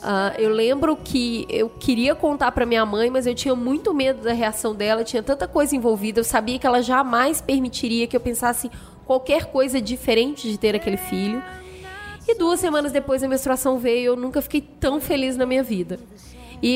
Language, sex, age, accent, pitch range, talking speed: Portuguese, female, 10-29, Brazilian, 225-265 Hz, 195 wpm